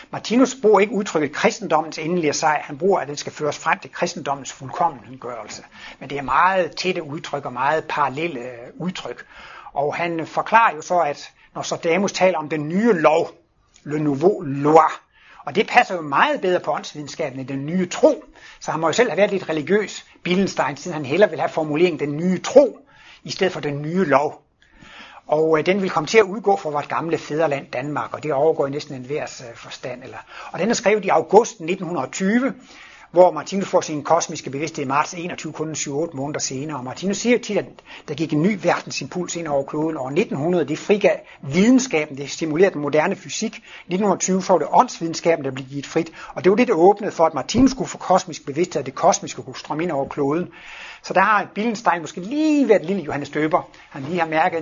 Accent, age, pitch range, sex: native, 60-79, 145-190 Hz, male